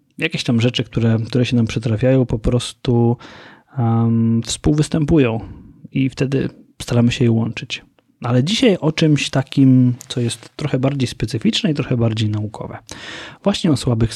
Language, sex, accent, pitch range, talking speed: Polish, male, native, 115-145 Hz, 145 wpm